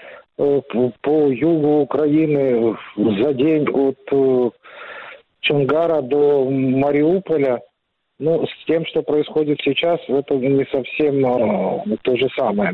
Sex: male